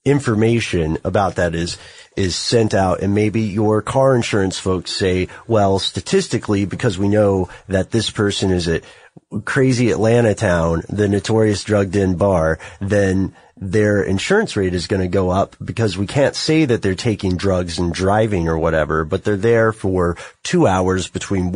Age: 30-49